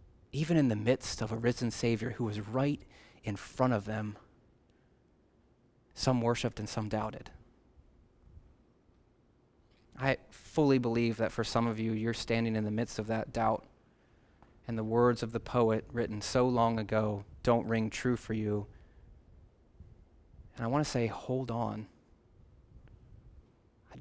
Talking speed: 145 wpm